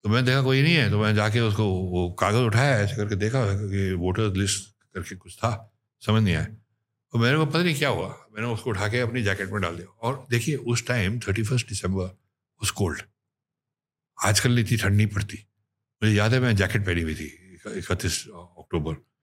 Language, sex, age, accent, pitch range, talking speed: Hindi, male, 60-79, native, 95-125 Hz, 205 wpm